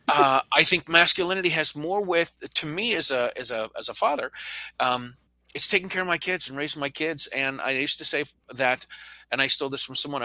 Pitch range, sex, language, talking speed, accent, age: 125-155 Hz, male, English, 230 wpm, American, 40-59